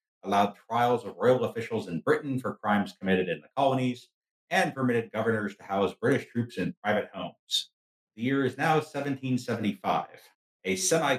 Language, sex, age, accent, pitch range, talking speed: English, male, 50-69, American, 105-130 Hz, 160 wpm